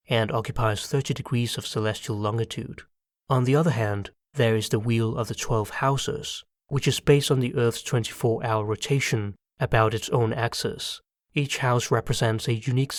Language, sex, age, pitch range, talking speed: English, male, 20-39, 110-135 Hz, 165 wpm